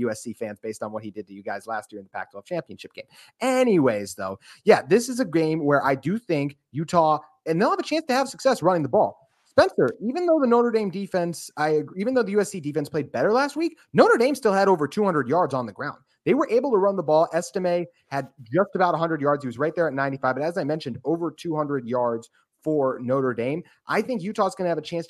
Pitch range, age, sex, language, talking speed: 140-185 Hz, 30-49, male, English, 250 wpm